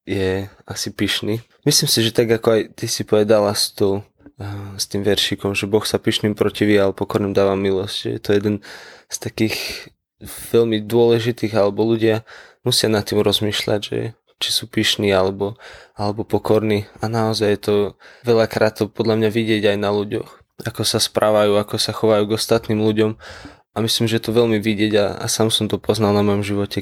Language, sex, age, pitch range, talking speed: Slovak, male, 20-39, 100-110 Hz, 180 wpm